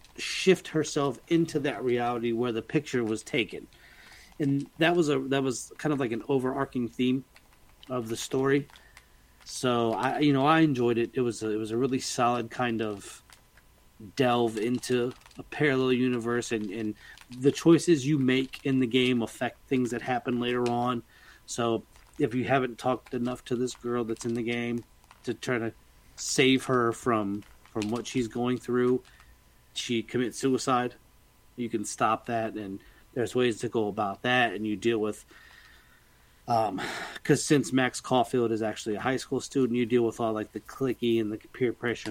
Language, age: English, 30-49